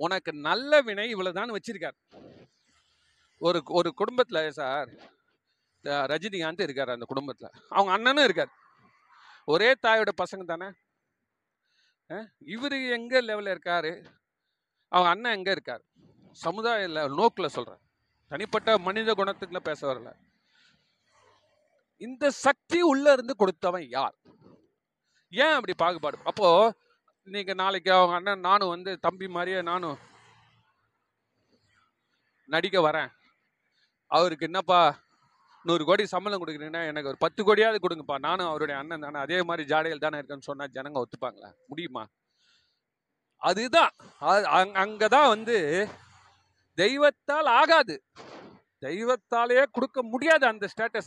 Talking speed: 50 wpm